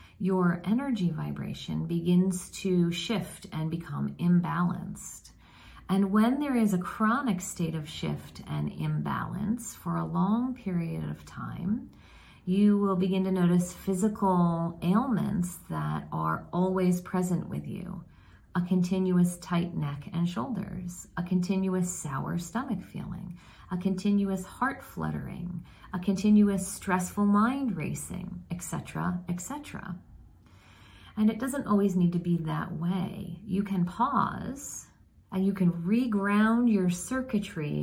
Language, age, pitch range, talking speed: English, 40-59, 170-200 Hz, 125 wpm